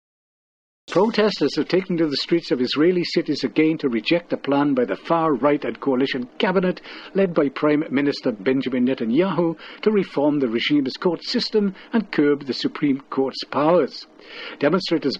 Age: 60-79